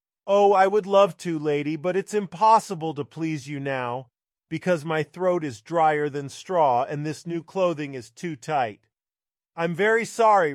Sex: male